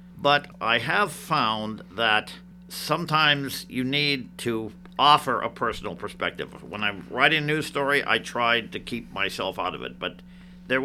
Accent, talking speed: American, 160 wpm